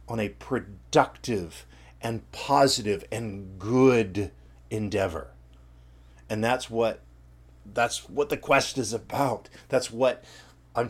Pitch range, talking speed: 90-140 Hz, 110 wpm